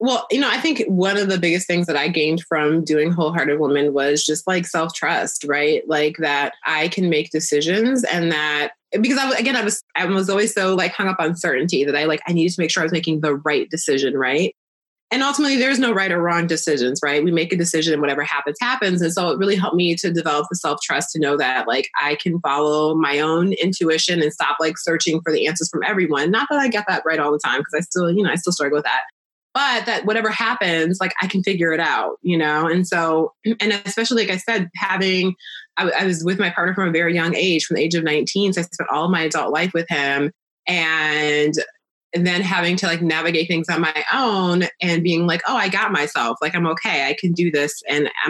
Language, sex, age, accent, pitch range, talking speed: English, female, 20-39, American, 155-190 Hz, 245 wpm